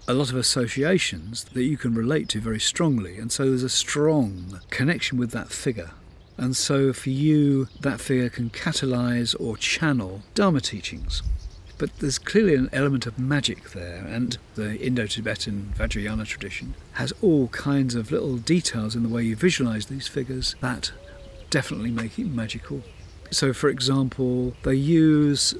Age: 50-69